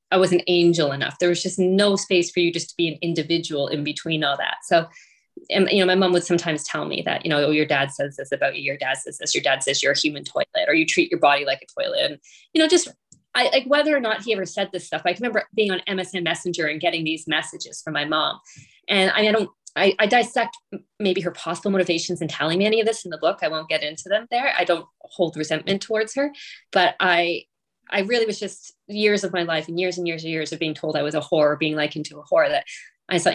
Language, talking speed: English, 270 wpm